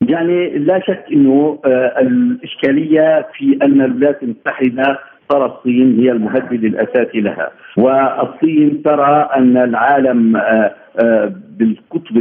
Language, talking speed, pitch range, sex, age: Arabic, 100 wpm, 120-170 Hz, male, 50-69